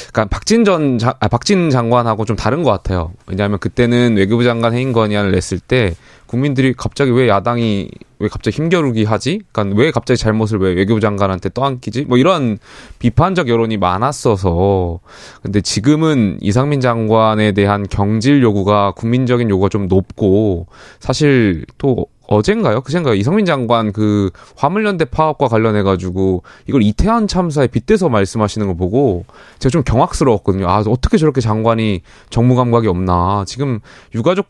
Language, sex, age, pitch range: Korean, male, 20-39, 105-135 Hz